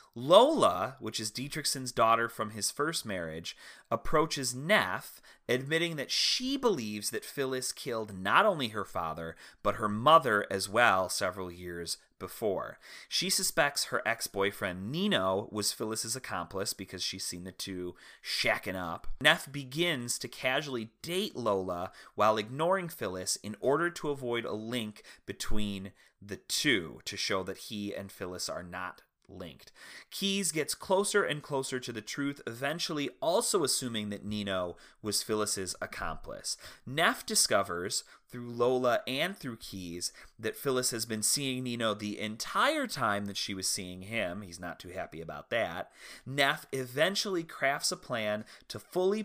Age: 30-49